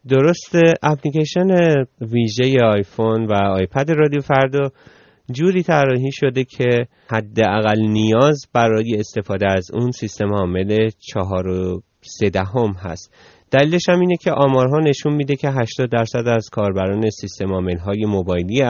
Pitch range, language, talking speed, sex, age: 100-135 Hz, Persian, 125 wpm, male, 30-49